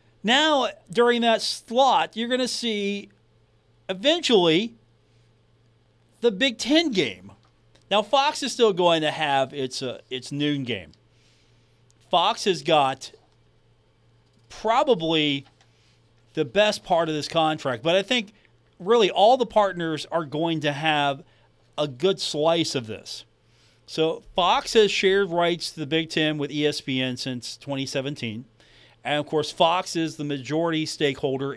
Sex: male